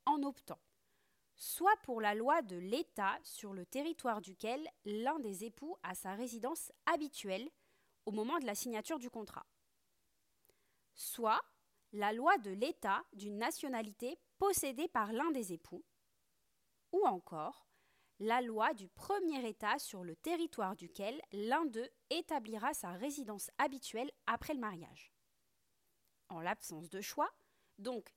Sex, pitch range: female, 210-320 Hz